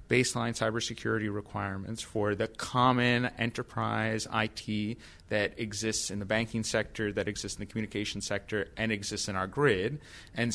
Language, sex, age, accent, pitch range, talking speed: English, male, 30-49, American, 100-120 Hz, 150 wpm